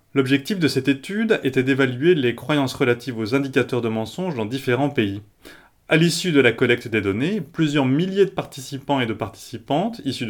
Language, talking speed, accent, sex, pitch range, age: French, 180 wpm, French, male, 110-140 Hz, 20-39